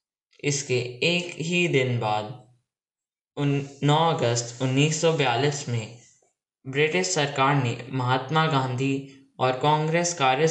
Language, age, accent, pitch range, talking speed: English, 10-29, Indian, 120-150 Hz, 95 wpm